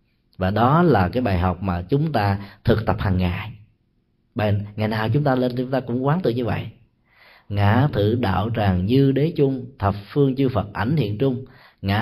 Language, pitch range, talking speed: Vietnamese, 100-135 Hz, 205 wpm